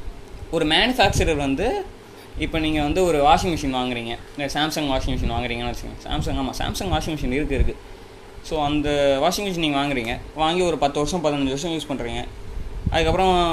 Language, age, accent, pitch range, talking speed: Tamil, 20-39, native, 125-165 Hz, 170 wpm